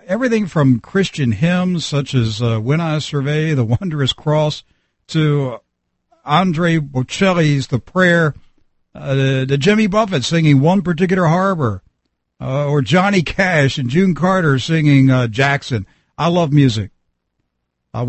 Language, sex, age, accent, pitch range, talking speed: English, male, 60-79, American, 125-180 Hz, 135 wpm